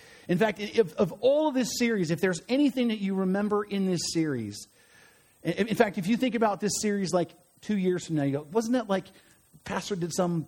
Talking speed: 210 wpm